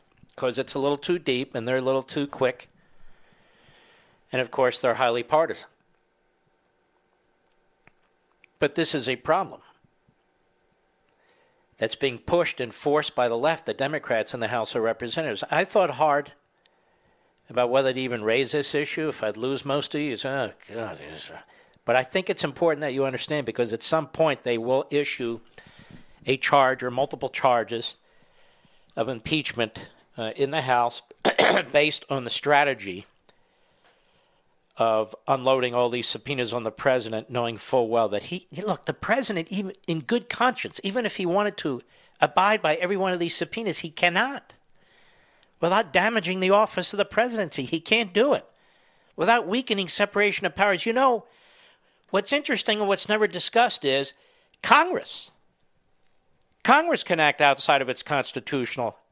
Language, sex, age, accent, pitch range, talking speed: English, male, 50-69, American, 130-195 Hz, 150 wpm